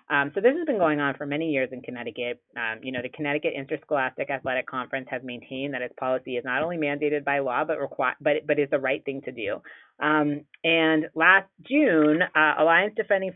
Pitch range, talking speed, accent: 135-160 Hz, 210 wpm, American